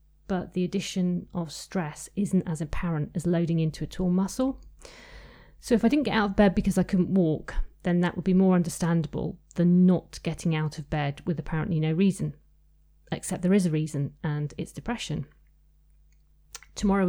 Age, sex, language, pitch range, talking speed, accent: 40-59, female, English, 160-195 Hz, 175 wpm, British